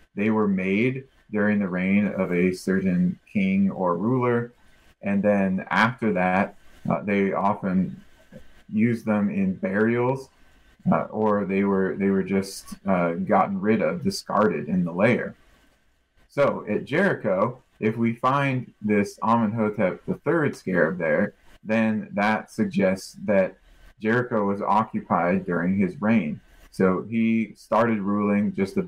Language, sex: English, male